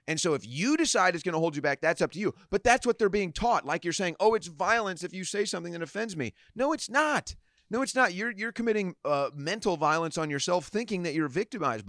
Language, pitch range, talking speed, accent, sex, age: English, 145-205 Hz, 265 wpm, American, male, 30-49